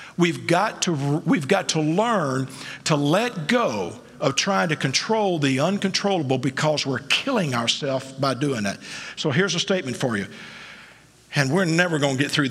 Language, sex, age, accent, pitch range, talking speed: English, male, 50-69, American, 135-190 Hz, 165 wpm